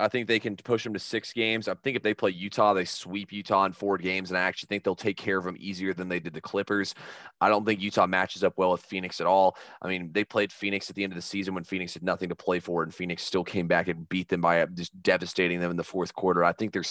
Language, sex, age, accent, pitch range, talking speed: English, male, 20-39, American, 90-100 Hz, 300 wpm